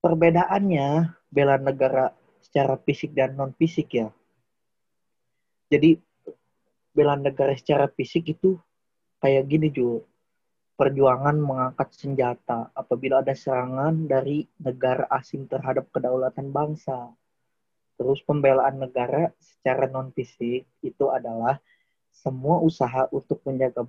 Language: Indonesian